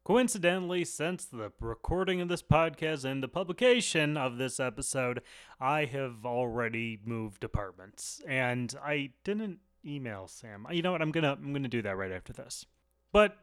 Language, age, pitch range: English, 30-49, 125-175 Hz